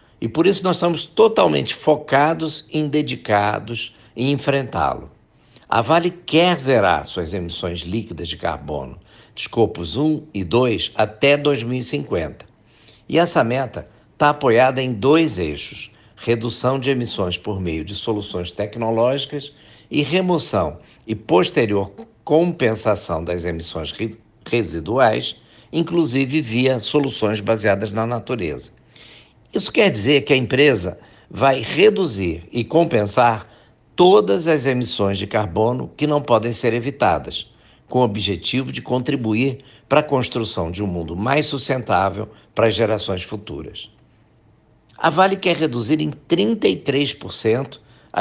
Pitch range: 105-140 Hz